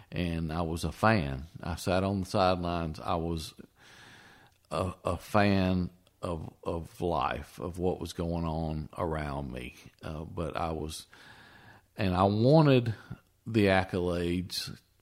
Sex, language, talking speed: male, English, 135 wpm